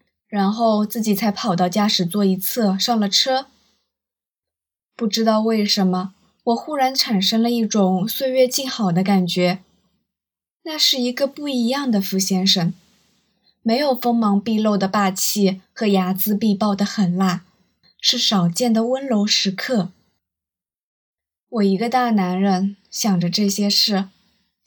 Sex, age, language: female, 20-39, Chinese